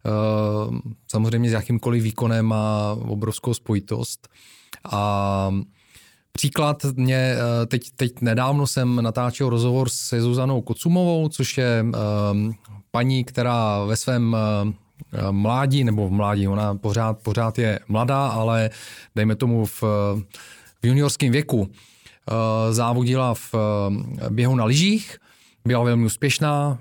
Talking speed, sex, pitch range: 110 wpm, male, 110-130 Hz